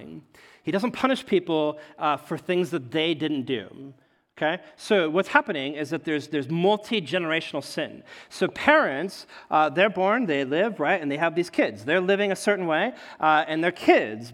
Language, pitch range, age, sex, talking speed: English, 140-200 Hz, 40-59, male, 180 wpm